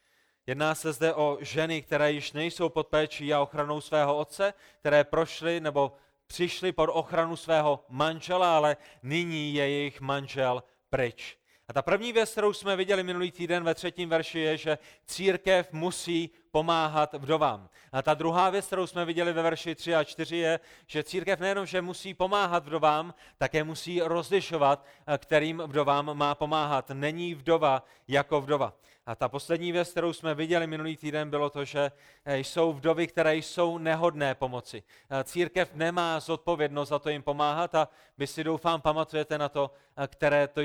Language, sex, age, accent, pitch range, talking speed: Czech, male, 30-49, native, 140-165 Hz, 165 wpm